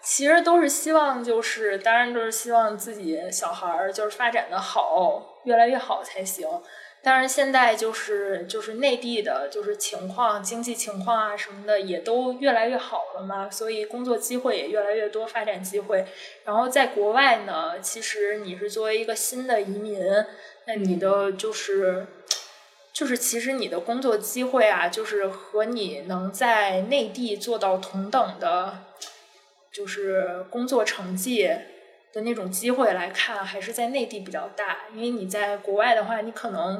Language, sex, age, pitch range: Chinese, female, 20-39, 205-245 Hz